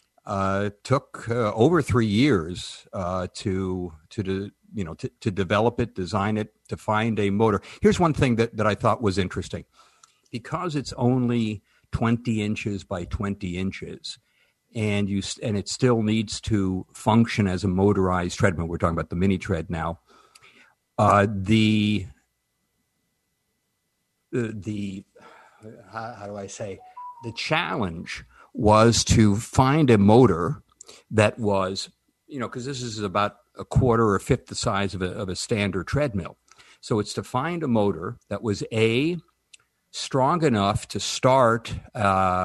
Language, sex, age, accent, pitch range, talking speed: English, male, 60-79, American, 95-115 Hz, 150 wpm